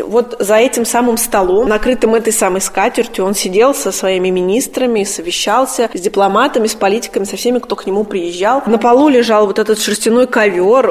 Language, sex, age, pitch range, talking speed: Russian, female, 20-39, 200-240 Hz, 175 wpm